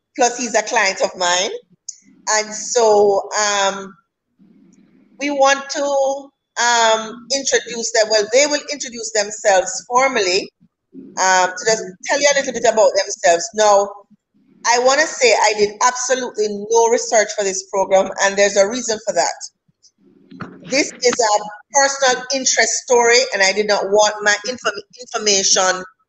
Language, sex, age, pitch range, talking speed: English, female, 30-49, 200-245 Hz, 145 wpm